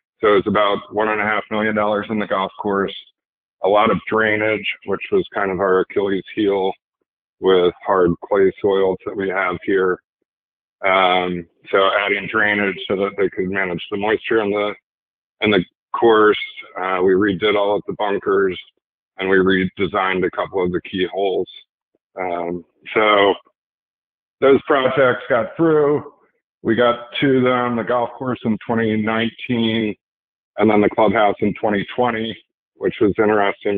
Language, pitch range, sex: English, 95-110 Hz, male